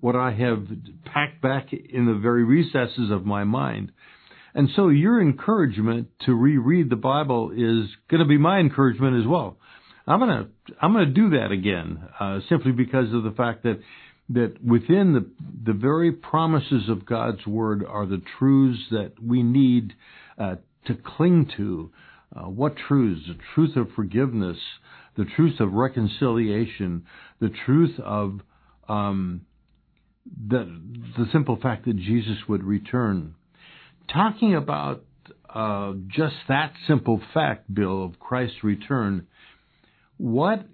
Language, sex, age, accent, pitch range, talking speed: English, male, 60-79, American, 105-135 Hz, 145 wpm